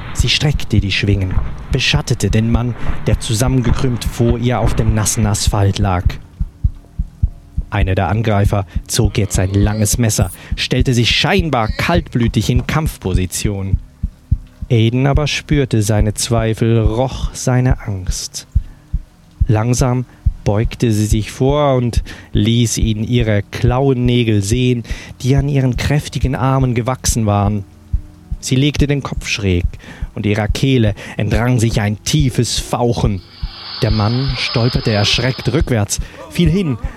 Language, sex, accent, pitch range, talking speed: German, male, German, 100-125 Hz, 125 wpm